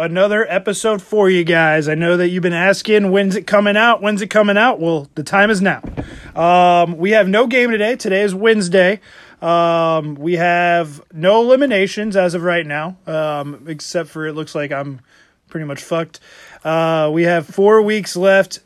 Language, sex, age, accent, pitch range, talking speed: English, male, 30-49, American, 170-215 Hz, 185 wpm